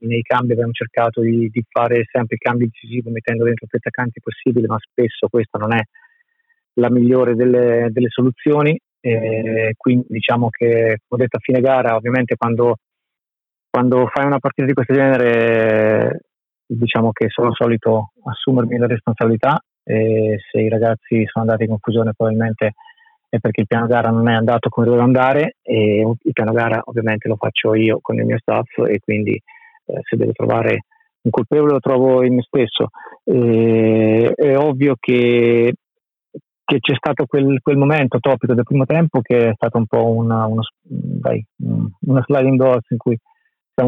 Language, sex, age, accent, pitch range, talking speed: Italian, male, 30-49, native, 115-135 Hz, 170 wpm